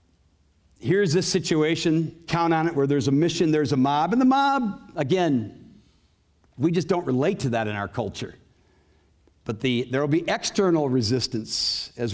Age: 60-79